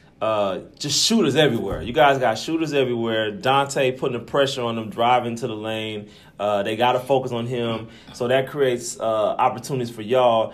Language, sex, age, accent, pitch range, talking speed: English, male, 30-49, American, 110-135 Hz, 190 wpm